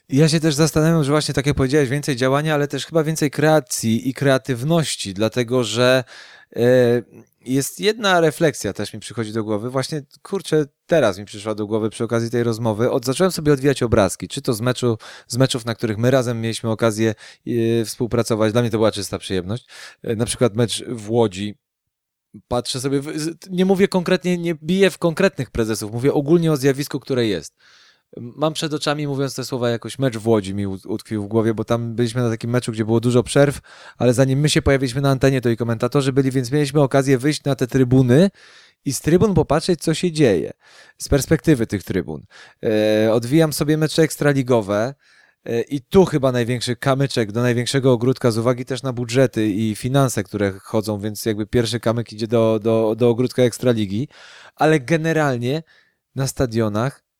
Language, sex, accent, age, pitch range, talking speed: Polish, male, native, 20-39, 115-145 Hz, 175 wpm